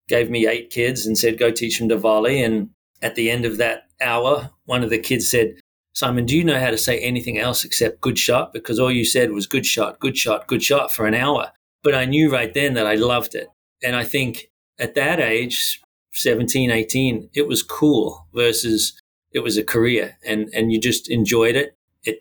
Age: 40-59